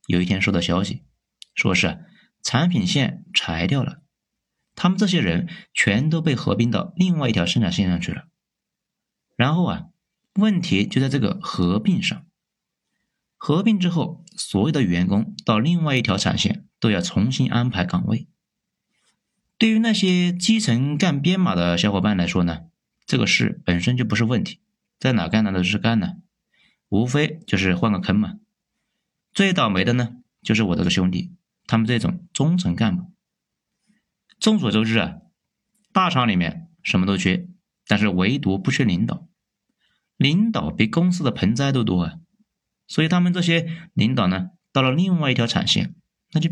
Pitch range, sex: 115-185 Hz, male